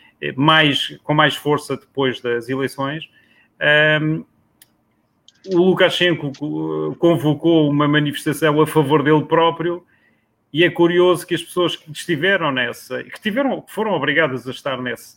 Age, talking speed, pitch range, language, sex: 30-49, 135 wpm, 145-175 Hz, Portuguese, male